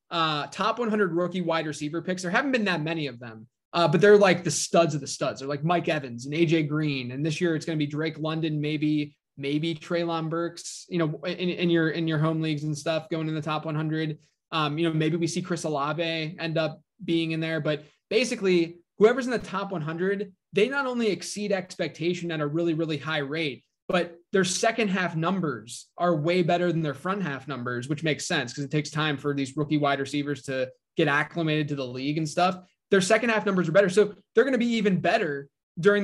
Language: English